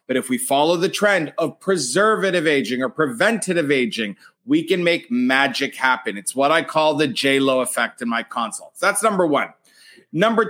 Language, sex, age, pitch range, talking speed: English, male, 30-49, 135-195 Hz, 175 wpm